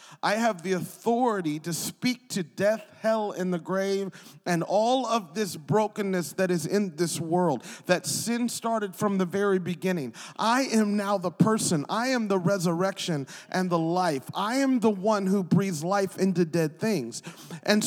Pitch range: 185-230 Hz